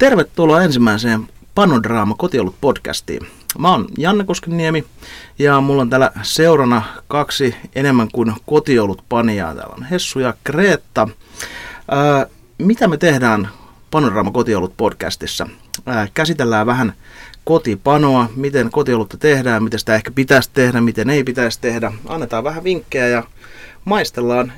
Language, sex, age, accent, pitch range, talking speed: Finnish, male, 30-49, native, 110-135 Hz, 115 wpm